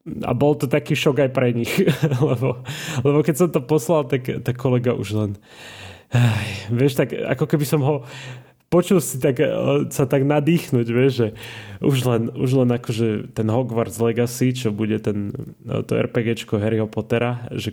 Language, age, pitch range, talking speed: Slovak, 20-39, 115-135 Hz, 170 wpm